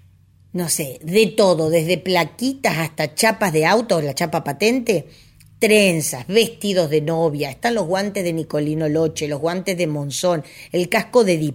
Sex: female